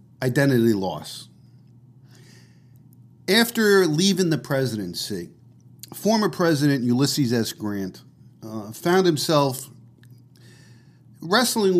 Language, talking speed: English, 75 wpm